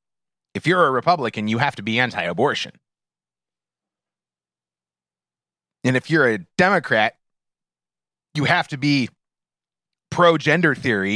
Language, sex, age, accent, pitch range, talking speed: English, male, 30-49, American, 110-155 Hz, 110 wpm